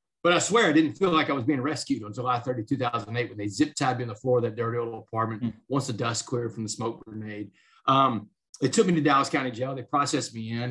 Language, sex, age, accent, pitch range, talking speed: English, male, 40-59, American, 120-155 Hz, 270 wpm